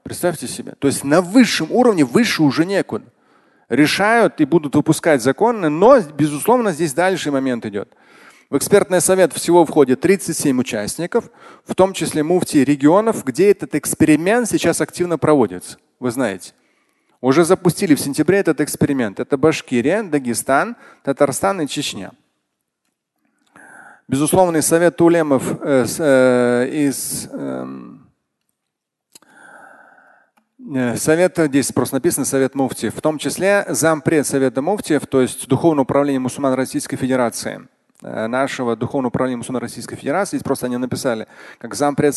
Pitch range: 130-170 Hz